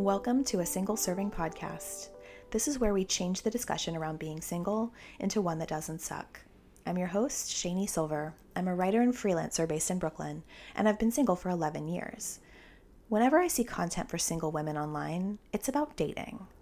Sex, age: female, 20-39